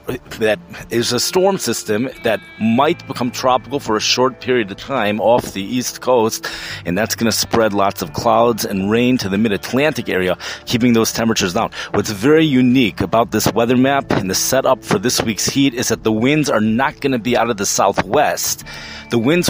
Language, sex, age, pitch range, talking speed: English, male, 30-49, 105-130 Hz, 205 wpm